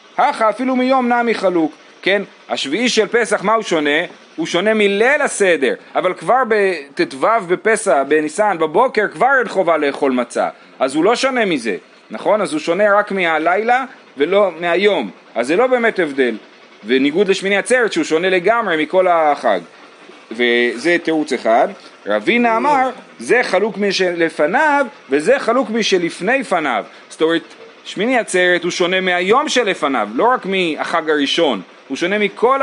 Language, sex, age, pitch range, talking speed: Hebrew, male, 30-49, 150-220 Hz, 145 wpm